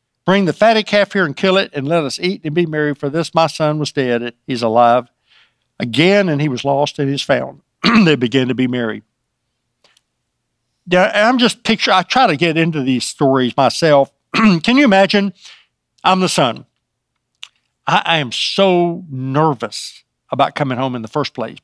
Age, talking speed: 60-79, 185 wpm